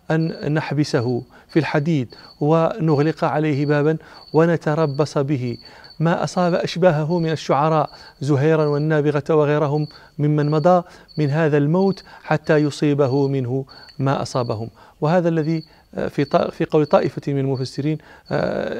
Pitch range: 135-160 Hz